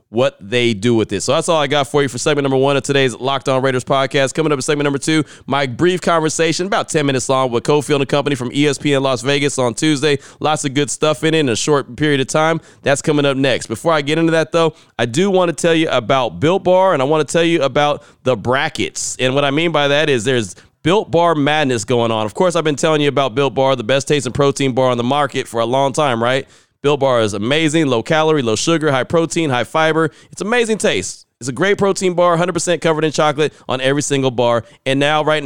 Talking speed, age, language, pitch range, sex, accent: 250 wpm, 30-49, English, 130-165 Hz, male, American